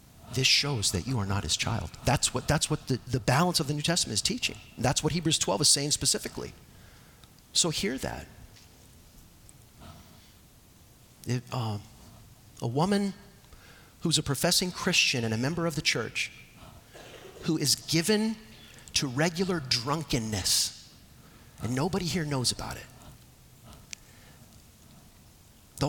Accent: American